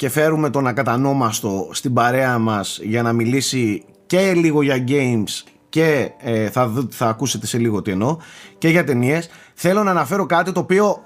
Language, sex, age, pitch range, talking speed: Greek, male, 30-49, 120-175 Hz, 175 wpm